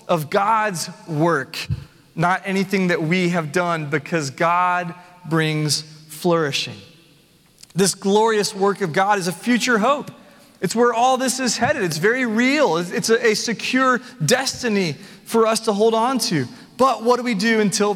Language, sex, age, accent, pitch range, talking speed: English, male, 30-49, American, 175-225 Hz, 160 wpm